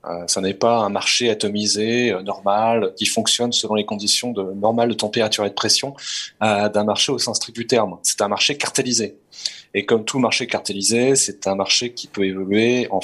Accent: French